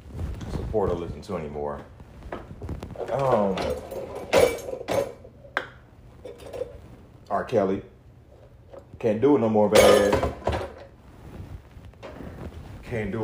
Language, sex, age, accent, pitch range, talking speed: English, male, 30-49, American, 80-125 Hz, 70 wpm